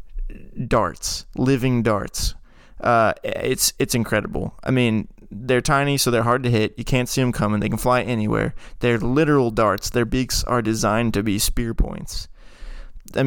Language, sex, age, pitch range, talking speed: English, male, 20-39, 115-140 Hz, 165 wpm